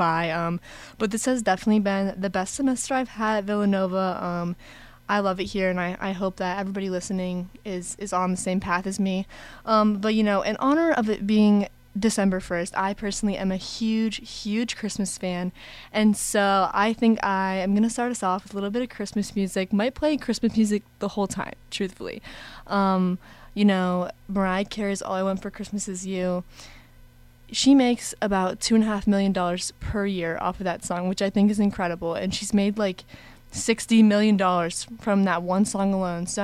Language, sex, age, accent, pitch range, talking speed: English, female, 20-39, American, 185-210 Hz, 195 wpm